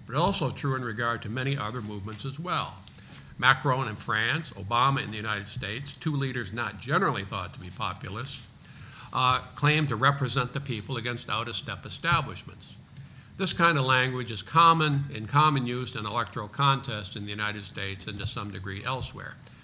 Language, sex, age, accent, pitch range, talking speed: English, male, 50-69, American, 115-140 Hz, 175 wpm